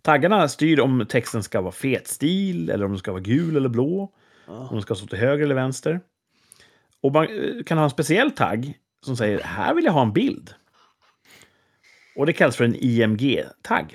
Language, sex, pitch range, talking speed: Swedish, male, 110-155 Hz, 190 wpm